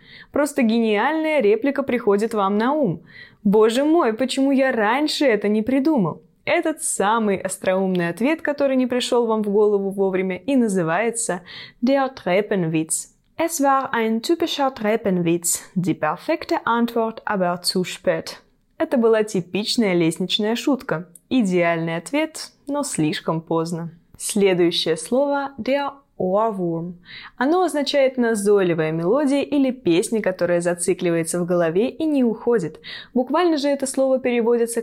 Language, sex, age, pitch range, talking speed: Russian, female, 20-39, 185-270 Hz, 105 wpm